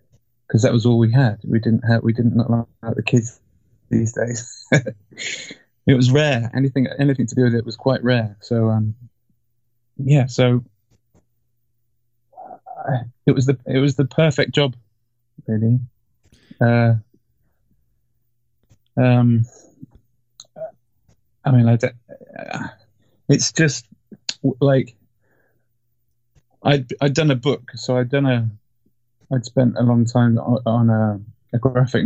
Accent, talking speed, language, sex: British, 130 wpm, English, male